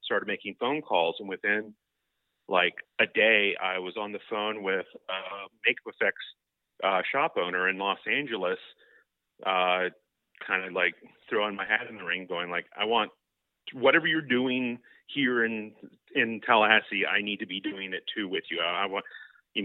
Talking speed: 175 wpm